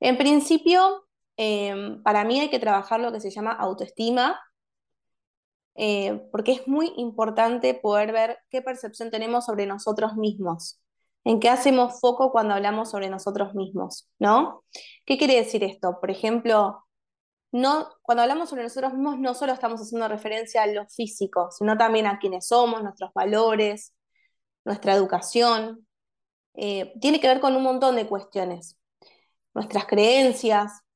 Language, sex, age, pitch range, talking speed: Spanish, female, 20-39, 205-260 Hz, 145 wpm